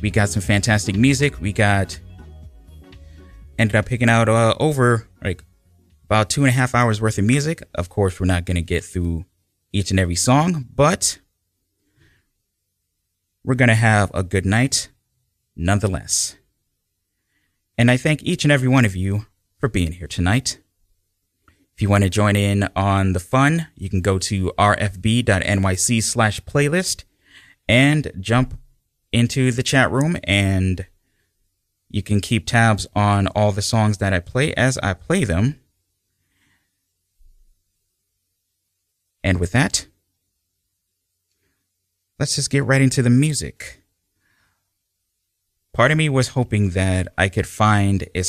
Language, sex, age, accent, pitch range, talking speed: English, male, 30-49, American, 90-115 Hz, 145 wpm